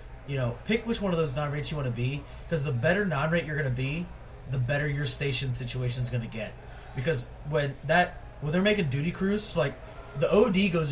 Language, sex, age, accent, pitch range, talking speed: English, male, 30-49, American, 130-170 Hz, 240 wpm